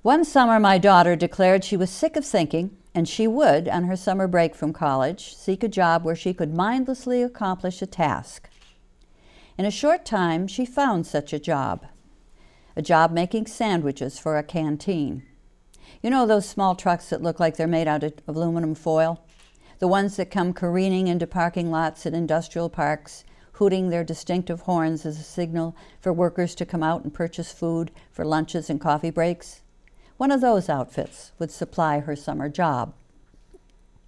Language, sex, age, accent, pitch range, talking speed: English, female, 60-79, American, 160-205 Hz, 175 wpm